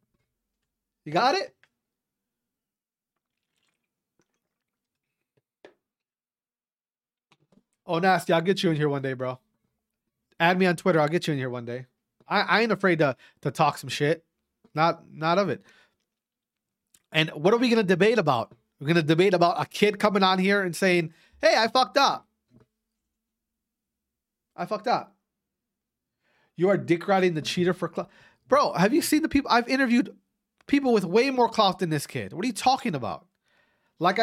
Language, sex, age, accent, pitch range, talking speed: English, male, 30-49, American, 155-210 Hz, 165 wpm